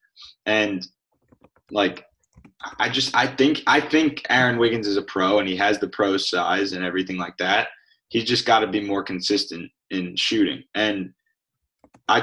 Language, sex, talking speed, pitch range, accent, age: English, male, 170 wpm, 95-130 Hz, American, 20-39